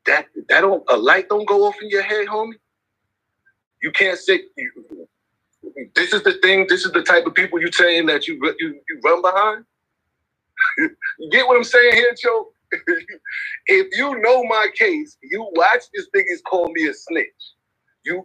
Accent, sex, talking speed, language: American, male, 185 wpm, English